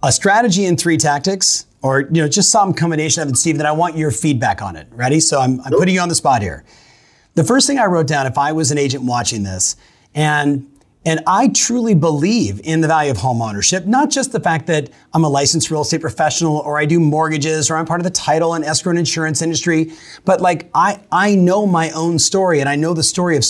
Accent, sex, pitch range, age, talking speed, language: American, male, 145-185 Hz, 30-49, 240 wpm, English